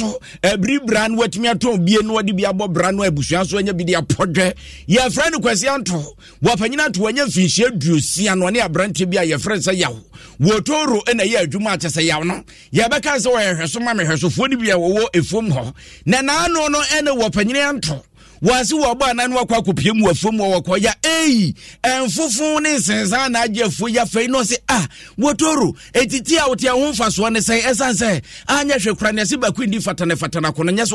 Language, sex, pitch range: English, male, 185-245 Hz